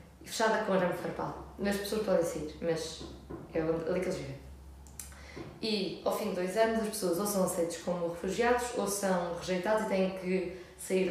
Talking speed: 200 wpm